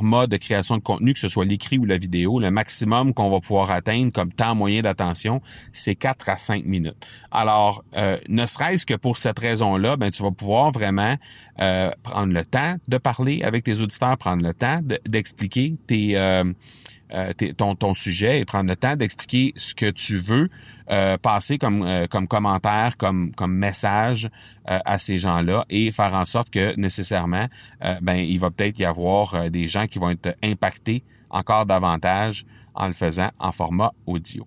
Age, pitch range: 30-49, 95-125 Hz